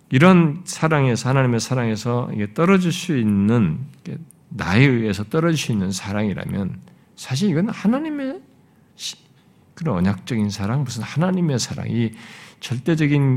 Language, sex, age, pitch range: Korean, male, 50-69, 125-180 Hz